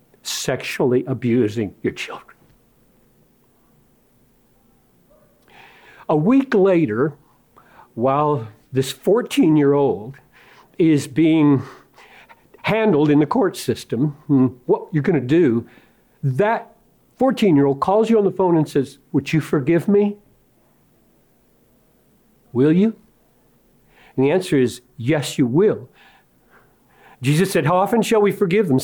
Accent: American